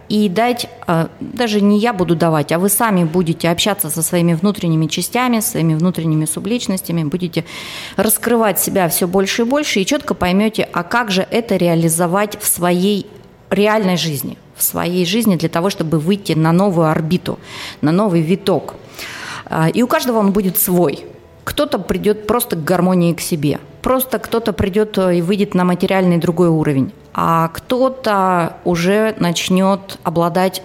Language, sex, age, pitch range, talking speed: Russian, female, 30-49, 170-205 Hz, 155 wpm